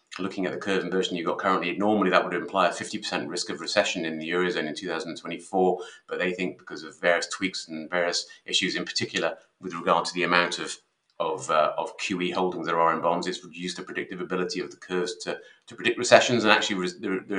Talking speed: 225 wpm